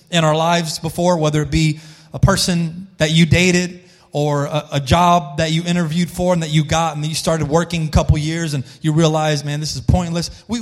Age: 30-49